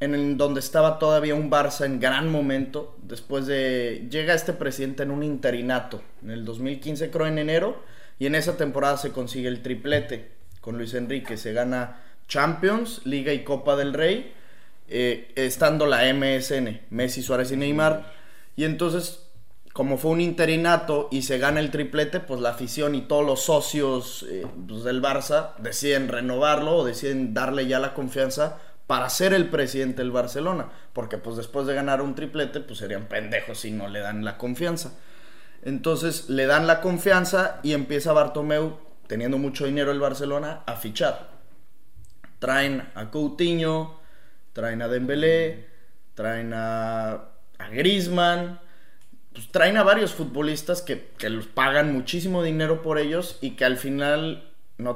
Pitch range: 125-155 Hz